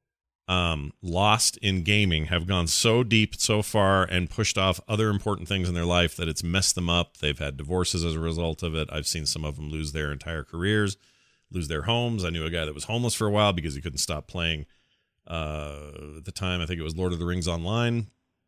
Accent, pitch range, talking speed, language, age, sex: American, 80-105 Hz, 235 wpm, English, 40-59, male